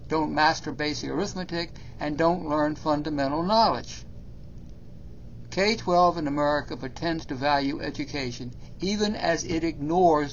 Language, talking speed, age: English, 115 wpm, 60-79